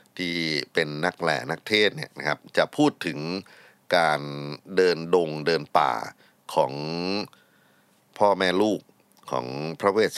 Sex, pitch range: male, 75-95 Hz